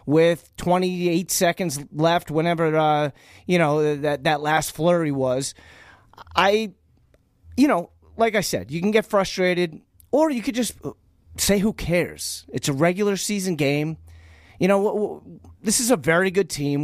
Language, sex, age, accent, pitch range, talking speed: English, male, 30-49, American, 145-185 Hz, 155 wpm